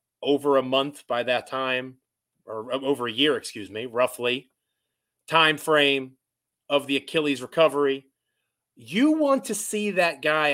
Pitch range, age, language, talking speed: 140-200 Hz, 30-49, English, 140 wpm